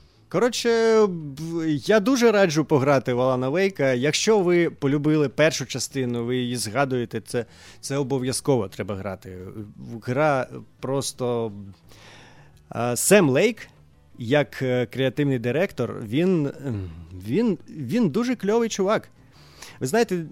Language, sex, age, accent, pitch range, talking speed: Ukrainian, male, 30-49, native, 120-180 Hz, 110 wpm